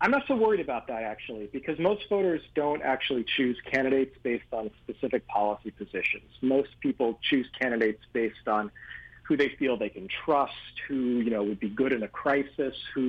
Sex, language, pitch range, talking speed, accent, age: male, English, 115-145 Hz, 190 wpm, American, 40-59